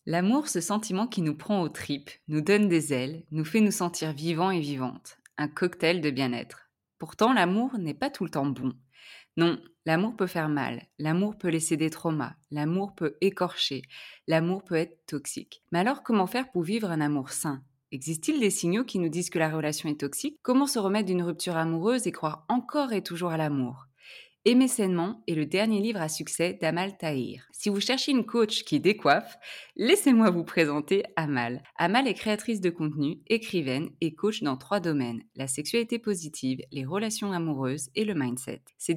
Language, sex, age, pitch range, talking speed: French, female, 20-39, 150-210 Hz, 190 wpm